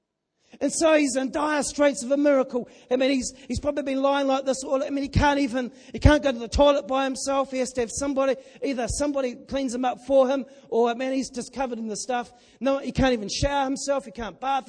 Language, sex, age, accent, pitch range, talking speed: English, male, 40-59, Australian, 245-285 Hz, 255 wpm